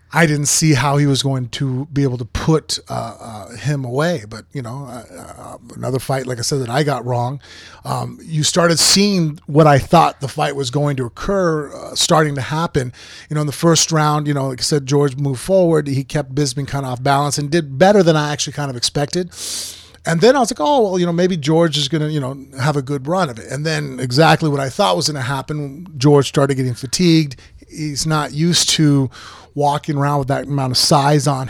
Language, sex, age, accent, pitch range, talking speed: English, male, 30-49, American, 130-155 Hz, 240 wpm